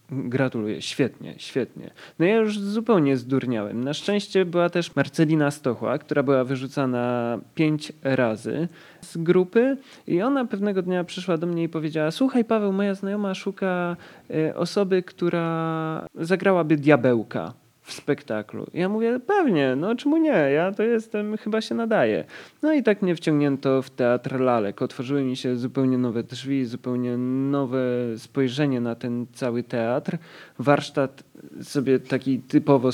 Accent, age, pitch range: native, 20-39, 130-175 Hz